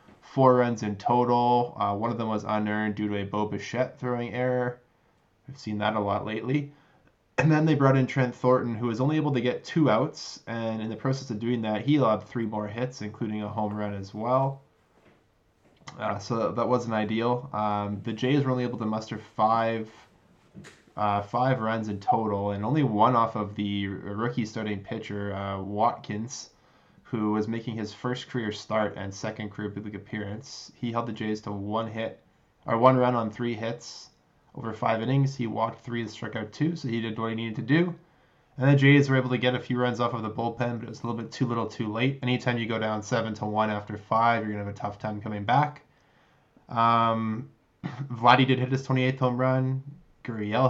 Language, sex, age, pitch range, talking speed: English, male, 20-39, 105-125 Hz, 210 wpm